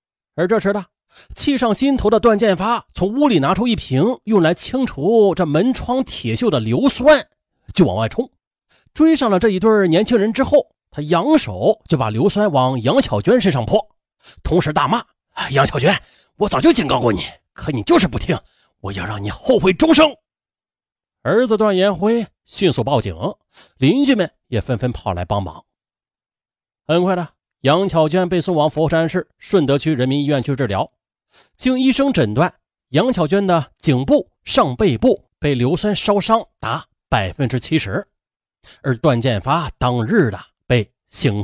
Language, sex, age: Chinese, male, 30-49